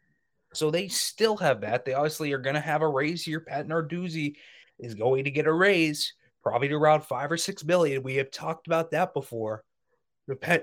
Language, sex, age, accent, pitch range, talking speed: English, male, 20-39, American, 130-165 Hz, 210 wpm